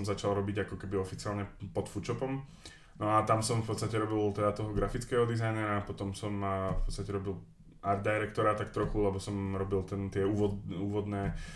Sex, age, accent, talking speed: male, 20-39, native, 170 wpm